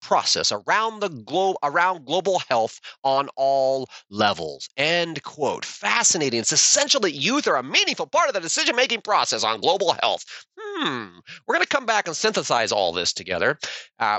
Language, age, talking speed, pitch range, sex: English, 30-49, 165 wpm, 140-210 Hz, male